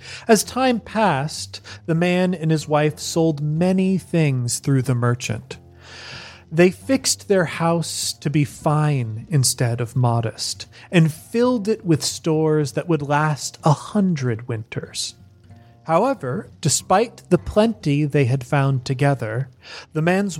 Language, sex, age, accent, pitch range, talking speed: English, male, 30-49, American, 125-170 Hz, 130 wpm